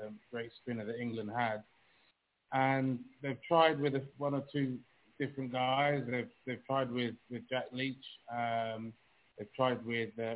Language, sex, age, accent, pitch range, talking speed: English, male, 20-39, British, 115-130 Hz, 160 wpm